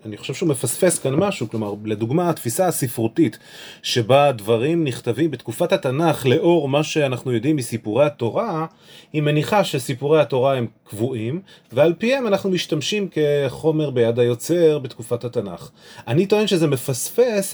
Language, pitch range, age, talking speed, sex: Hebrew, 125-165 Hz, 30-49, 135 wpm, male